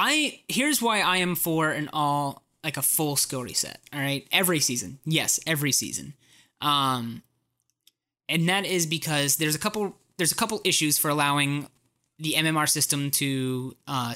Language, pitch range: English, 135-175 Hz